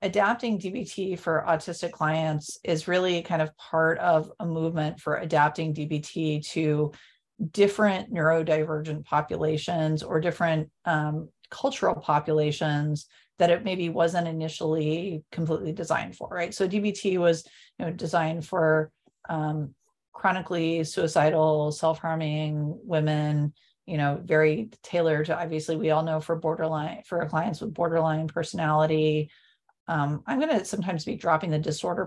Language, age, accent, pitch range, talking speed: English, 40-59, American, 155-190 Hz, 135 wpm